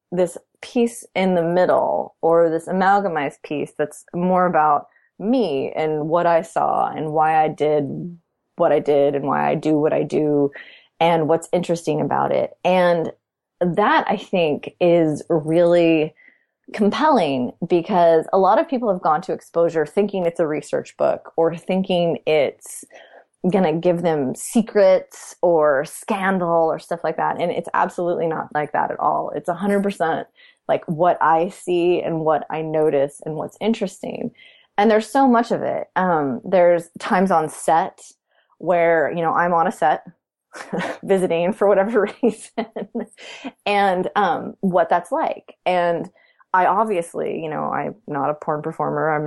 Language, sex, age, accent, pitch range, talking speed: English, female, 20-39, American, 160-200 Hz, 160 wpm